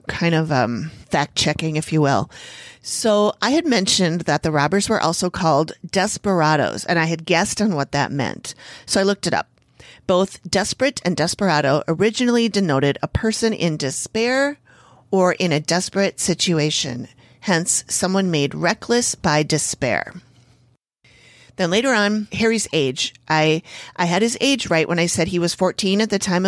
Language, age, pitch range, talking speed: English, 40-59, 150-205 Hz, 165 wpm